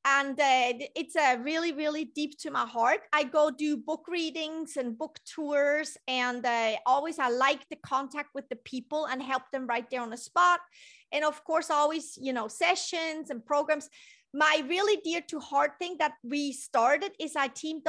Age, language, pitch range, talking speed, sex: 30-49, English, 270-330 Hz, 195 wpm, female